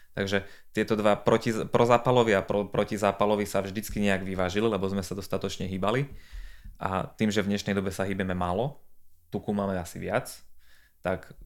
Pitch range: 95-110 Hz